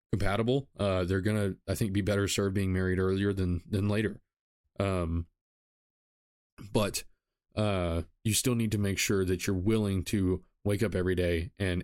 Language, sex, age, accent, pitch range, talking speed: English, male, 20-39, American, 90-110 Hz, 165 wpm